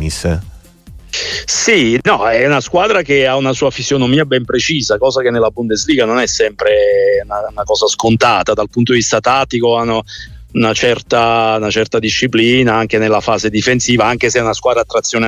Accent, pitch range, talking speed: native, 110-140 Hz, 175 wpm